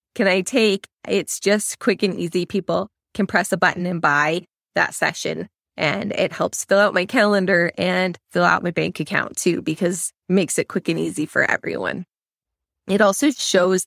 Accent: American